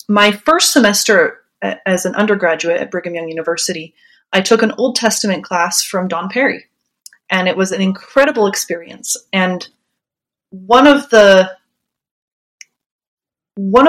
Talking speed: 130 wpm